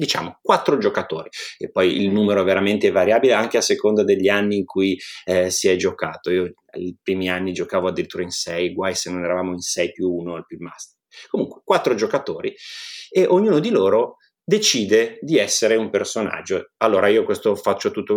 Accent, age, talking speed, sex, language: native, 30-49, 190 wpm, male, Italian